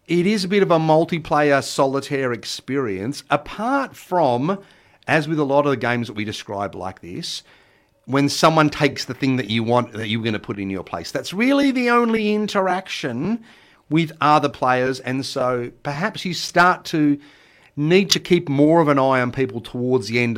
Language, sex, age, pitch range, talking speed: English, male, 40-59, 115-165 Hz, 190 wpm